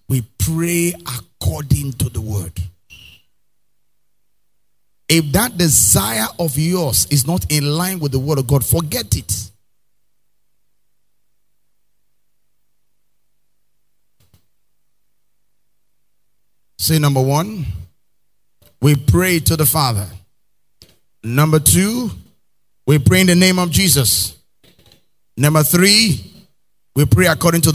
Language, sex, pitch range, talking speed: English, male, 120-165 Hz, 95 wpm